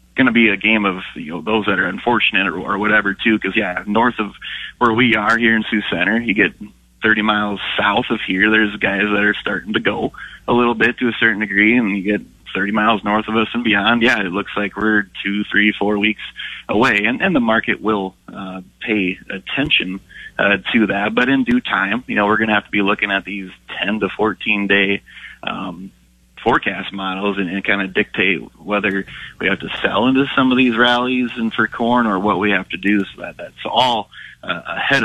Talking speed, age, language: 220 wpm, 30-49, English